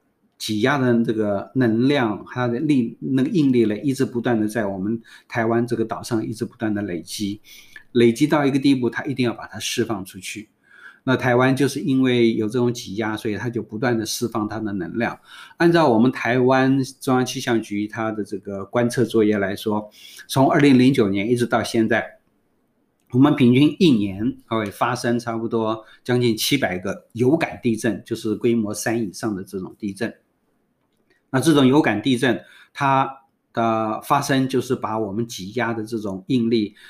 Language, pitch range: Chinese, 110-130 Hz